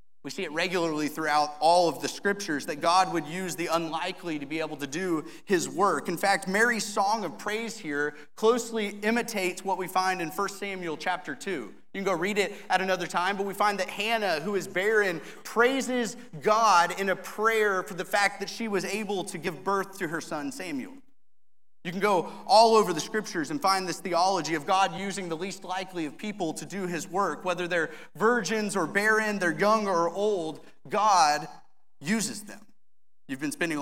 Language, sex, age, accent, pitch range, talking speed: English, male, 30-49, American, 170-210 Hz, 200 wpm